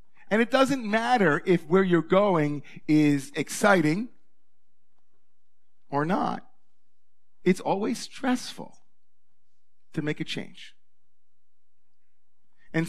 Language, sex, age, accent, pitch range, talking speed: English, male, 40-59, American, 160-210 Hz, 95 wpm